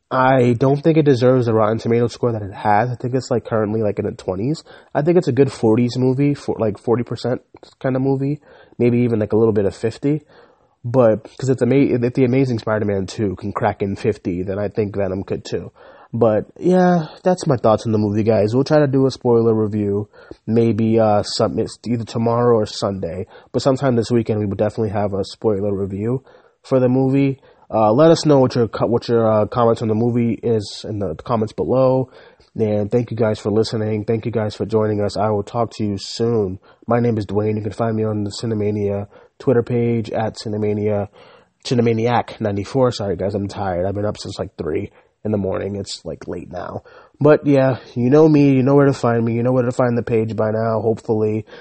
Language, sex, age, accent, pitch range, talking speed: English, male, 20-39, American, 105-125 Hz, 220 wpm